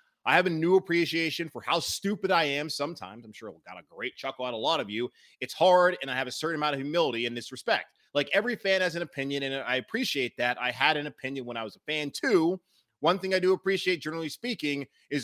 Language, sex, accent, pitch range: English, male, American, 115-145 Hz